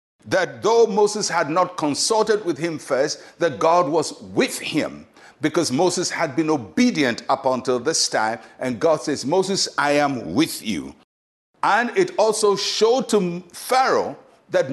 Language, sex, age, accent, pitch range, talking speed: English, male, 60-79, Nigerian, 145-210 Hz, 155 wpm